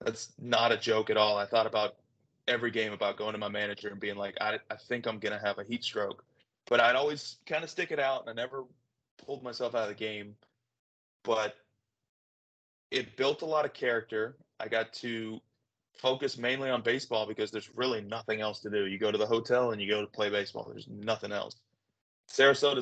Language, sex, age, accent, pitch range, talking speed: English, male, 20-39, American, 105-125 Hz, 215 wpm